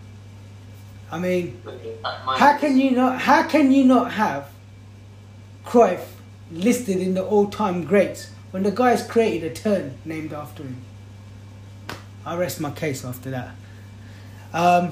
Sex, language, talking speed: male, English, 135 wpm